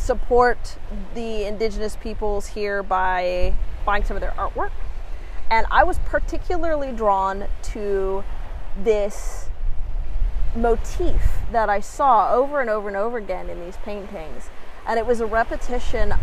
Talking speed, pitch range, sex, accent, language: 135 wpm, 195-245 Hz, female, American, English